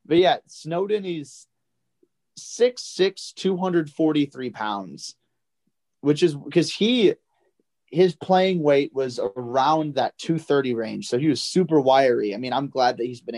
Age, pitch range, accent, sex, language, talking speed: 30-49, 130-170 Hz, American, male, English, 140 wpm